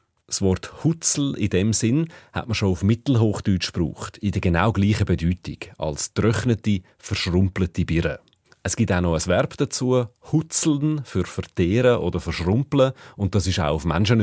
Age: 30-49